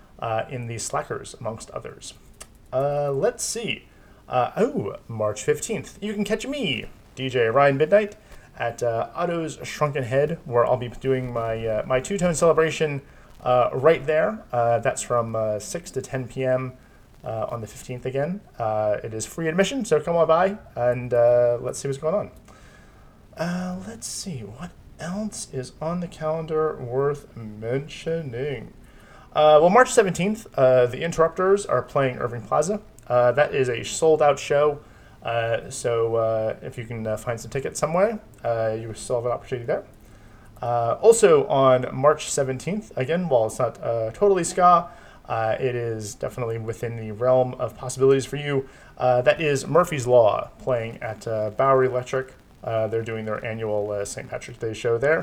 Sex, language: male, English